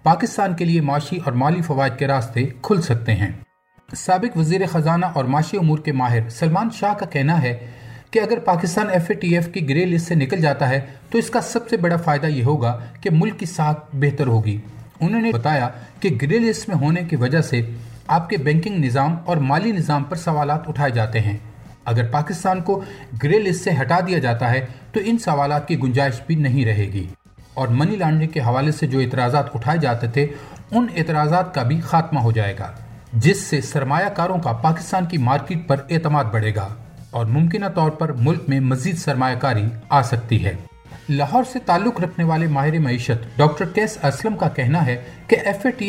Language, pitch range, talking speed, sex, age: Urdu, 130-175 Hz, 195 wpm, male, 40-59